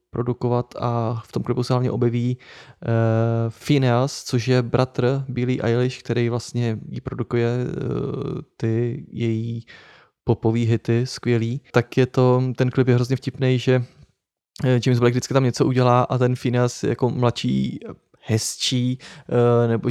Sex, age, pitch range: male, 20-39, 125-140 Hz